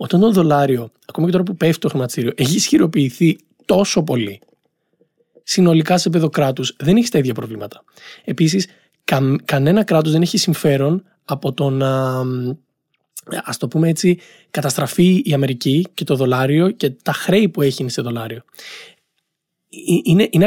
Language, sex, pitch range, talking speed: Greek, male, 130-180 Hz, 150 wpm